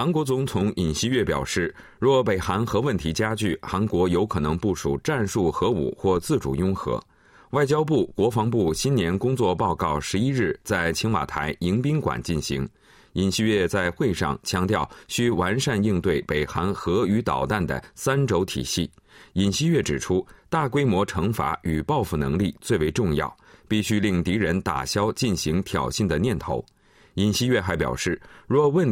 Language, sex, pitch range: Chinese, male, 85-120 Hz